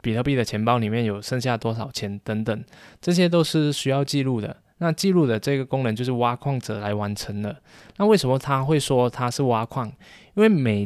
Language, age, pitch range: Chinese, 20-39, 115-150 Hz